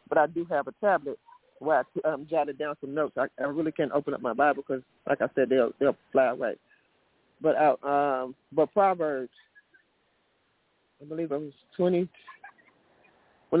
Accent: American